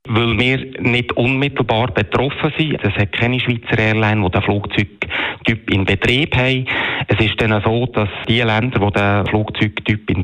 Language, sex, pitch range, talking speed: German, male, 95-120 Hz, 165 wpm